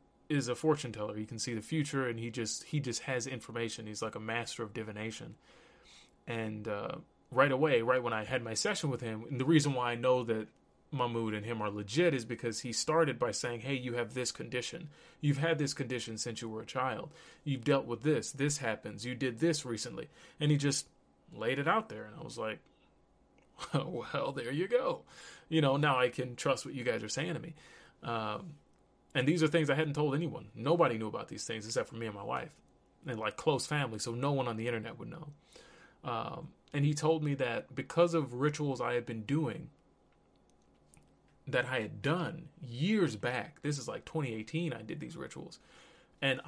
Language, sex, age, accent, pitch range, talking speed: English, male, 20-39, American, 115-150 Hz, 210 wpm